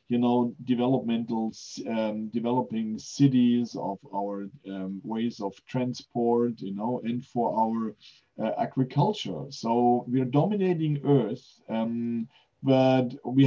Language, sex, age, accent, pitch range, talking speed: English, male, 40-59, German, 110-140 Hz, 120 wpm